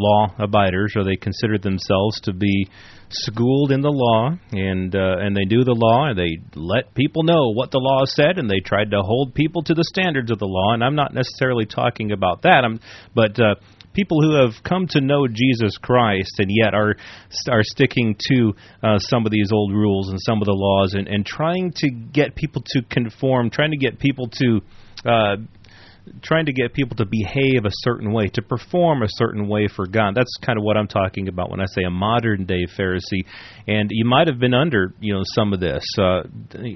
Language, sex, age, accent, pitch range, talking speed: English, male, 30-49, American, 100-130 Hz, 210 wpm